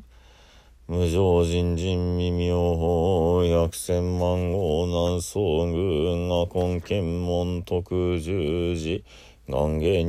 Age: 40-59